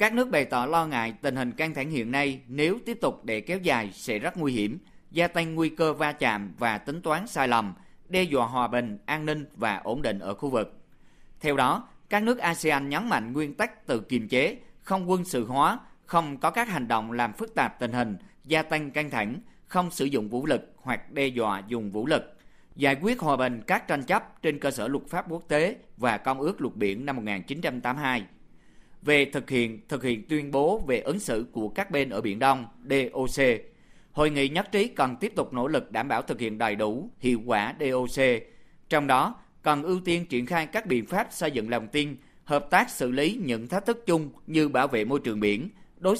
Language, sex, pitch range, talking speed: Vietnamese, male, 125-165 Hz, 220 wpm